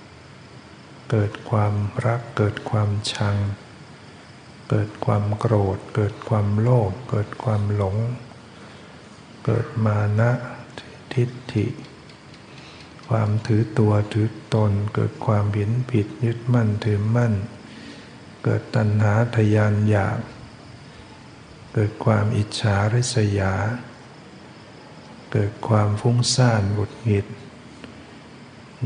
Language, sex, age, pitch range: Thai, male, 60-79, 105-120 Hz